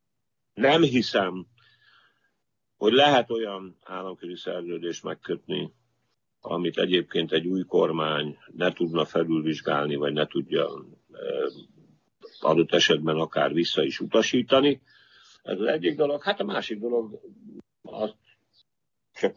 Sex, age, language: male, 50-69, Hungarian